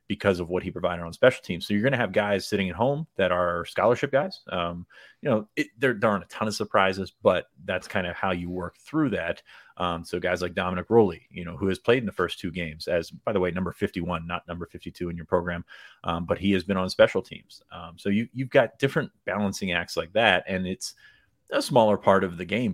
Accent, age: American, 30-49